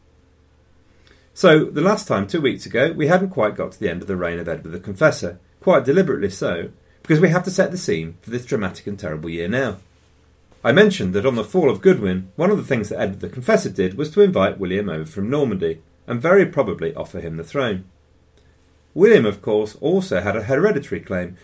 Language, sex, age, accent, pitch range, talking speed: English, male, 40-59, British, 85-145 Hz, 215 wpm